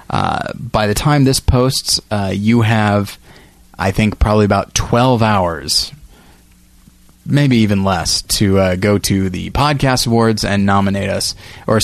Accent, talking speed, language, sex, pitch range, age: American, 145 wpm, English, male, 95-115 Hz, 20-39